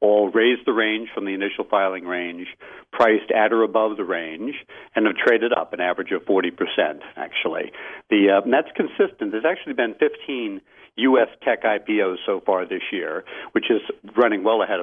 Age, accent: 60-79, American